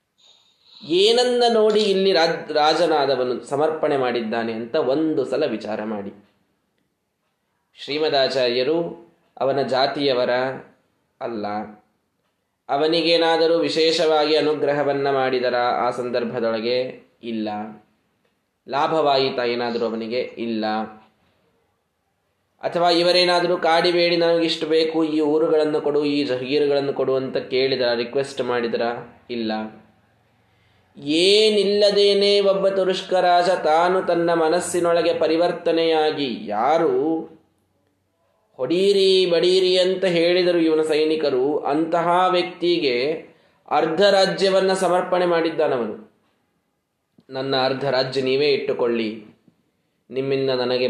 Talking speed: 80 wpm